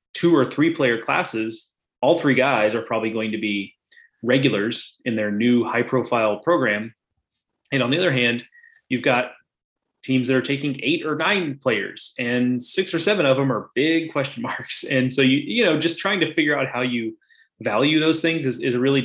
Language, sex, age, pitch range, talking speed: English, male, 20-39, 110-140 Hz, 200 wpm